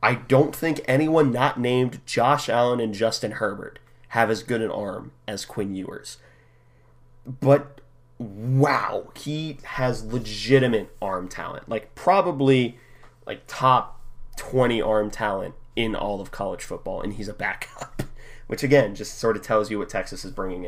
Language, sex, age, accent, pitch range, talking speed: English, male, 30-49, American, 115-140 Hz, 155 wpm